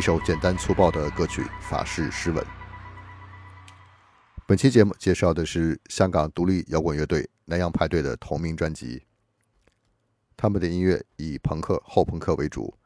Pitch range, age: 85-110 Hz, 50-69